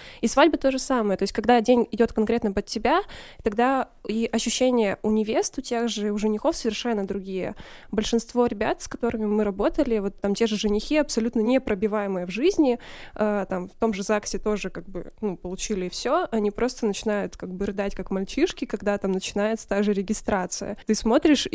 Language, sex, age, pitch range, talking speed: Russian, female, 20-39, 210-250 Hz, 185 wpm